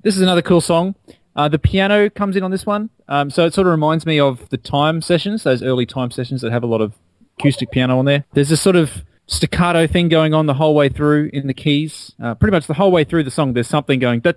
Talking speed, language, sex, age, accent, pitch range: 270 wpm, English, male, 30-49, Australian, 115-155 Hz